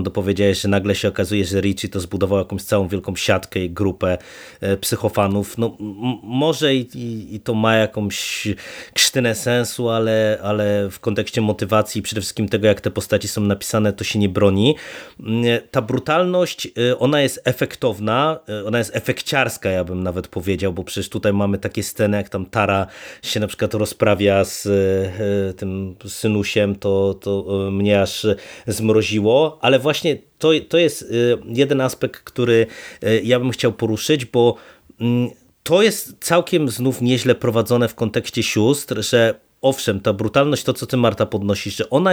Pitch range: 100-125 Hz